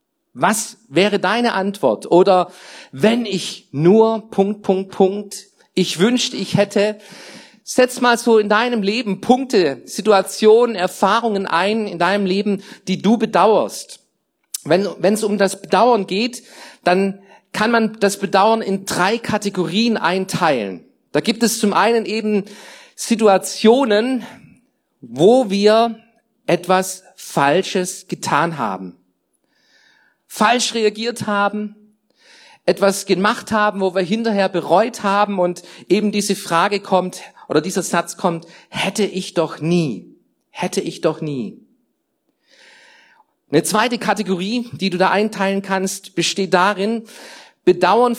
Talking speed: 120 wpm